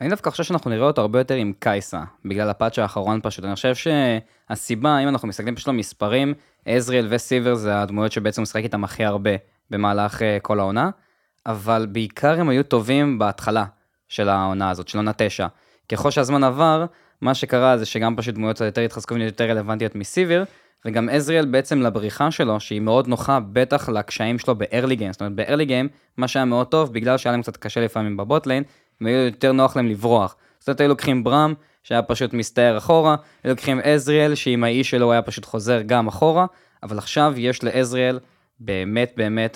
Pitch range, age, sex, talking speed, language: 110-135 Hz, 20-39, male, 160 wpm, Hebrew